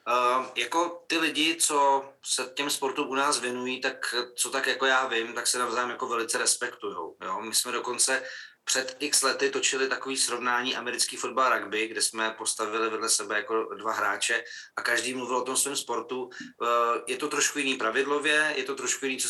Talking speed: 195 wpm